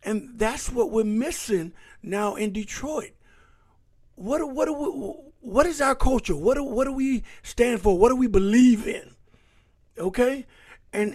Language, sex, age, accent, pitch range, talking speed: English, male, 50-69, American, 170-230 Hz, 145 wpm